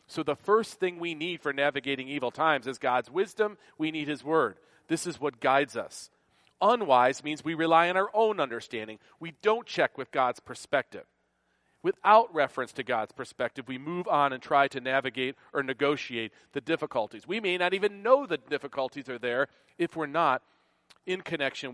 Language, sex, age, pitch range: English, male, 40-59, 130-165 Hz